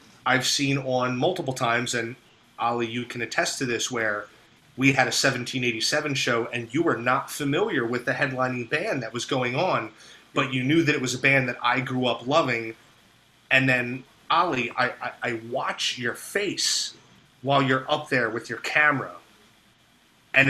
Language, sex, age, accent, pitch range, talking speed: English, male, 30-49, American, 120-140 Hz, 175 wpm